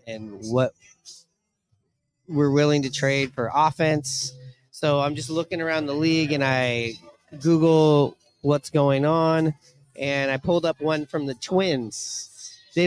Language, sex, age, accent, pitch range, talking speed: English, male, 30-49, American, 130-160 Hz, 140 wpm